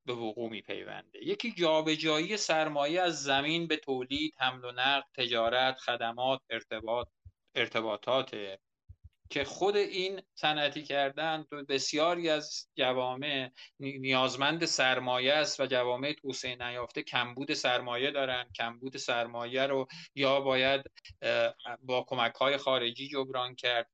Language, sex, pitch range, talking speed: Persian, male, 120-145 Hz, 110 wpm